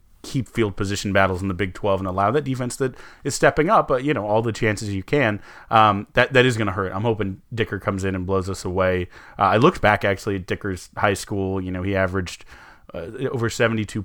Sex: male